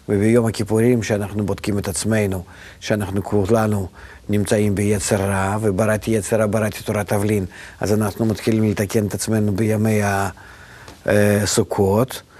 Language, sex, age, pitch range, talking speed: Hebrew, male, 50-69, 105-120 Hz, 115 wpm